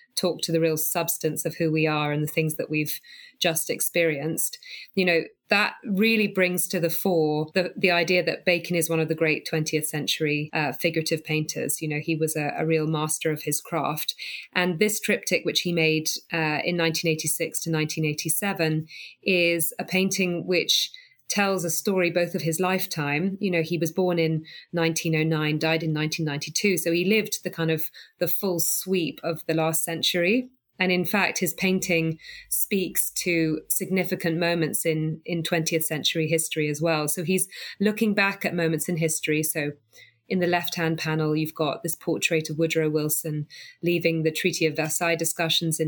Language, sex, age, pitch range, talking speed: English, female, 20-39, 155-180 Hz, 180 wpm